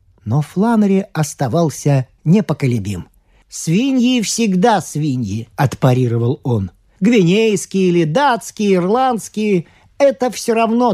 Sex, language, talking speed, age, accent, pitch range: male, Russian, 90 wpm, 40-59, native, 145-240 Hz